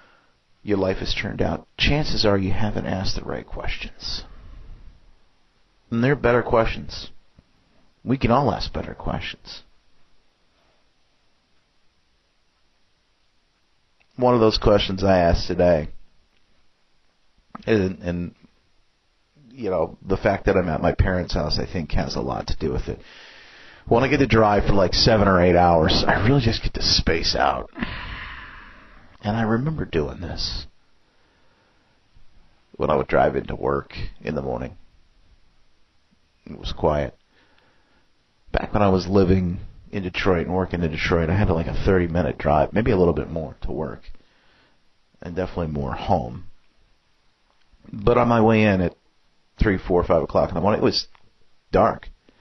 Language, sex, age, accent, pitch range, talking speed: English, male, 40-59, American, 80-110 Hz, 150 wpm